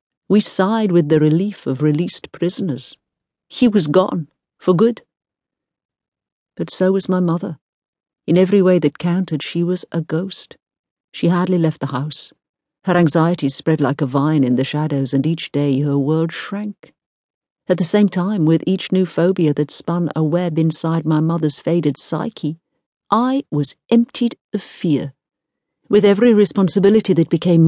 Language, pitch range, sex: English, 150-190 Hz, female